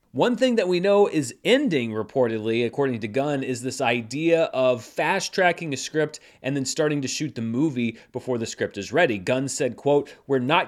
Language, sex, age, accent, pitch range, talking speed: English, male, 30-49, American, 125-165 Hz, 195 wpm